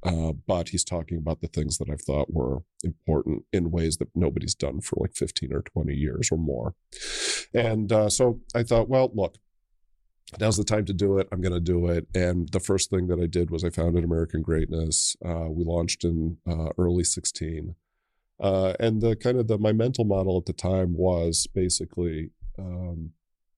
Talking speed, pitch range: 195 wpm, 85-100 Hz